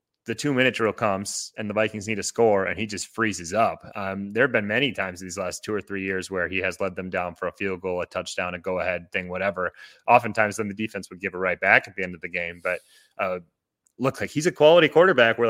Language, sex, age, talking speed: English, male, 30-49, 260 wpm